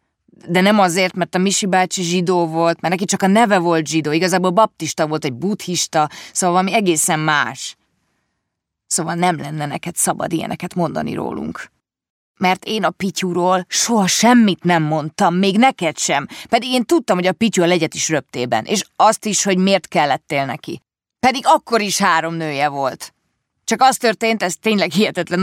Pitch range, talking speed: 160-210 Hz, 175 wpm